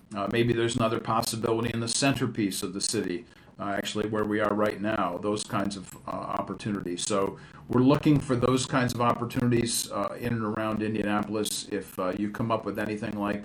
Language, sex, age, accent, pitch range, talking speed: English, male, 50-69, American, 105-120 Hz, 195 wpm